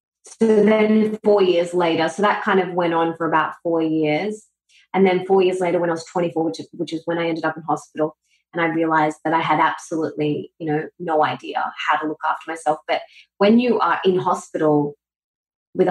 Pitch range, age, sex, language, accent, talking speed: 165-200 Hz, 20-39, female, English, Australian, 210 wpm